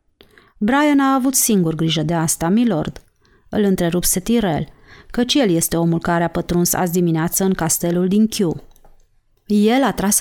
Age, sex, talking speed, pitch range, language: 30-49, female, 160 wpm, 170-215 Hz, Romanian